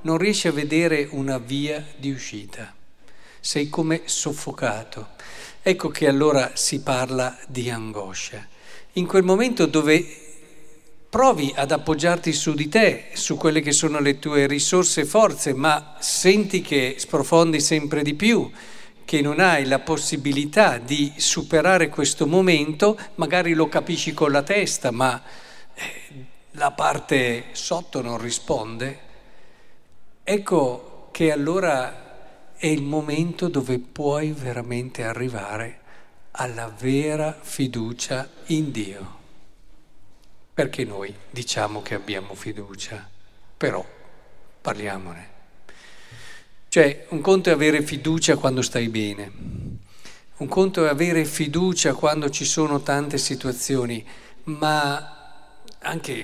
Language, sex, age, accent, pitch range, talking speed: Italian, male, 50-69, native, 125-160 Hz, 115 wpm